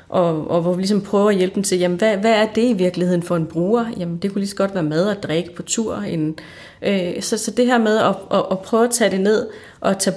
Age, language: 30-49, Danish